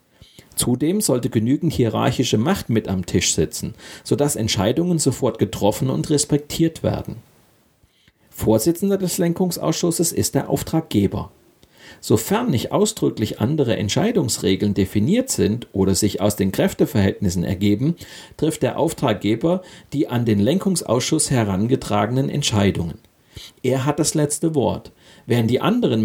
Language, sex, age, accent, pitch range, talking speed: German, male, 40-59, German, 105-145 Hz, 120 wpm